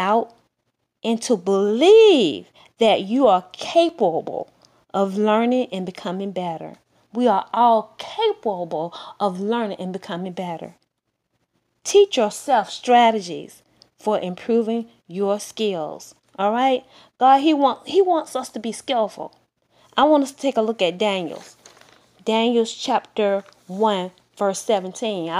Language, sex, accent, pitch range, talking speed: English, female, American, 200-255 Hz, 125 wpm